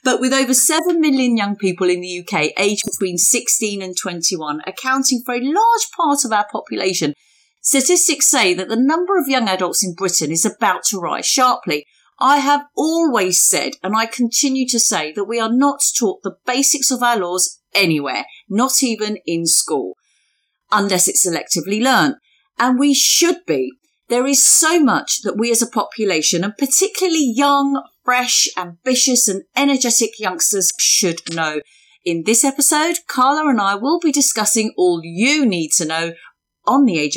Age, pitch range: 40-59, 180-270 Hz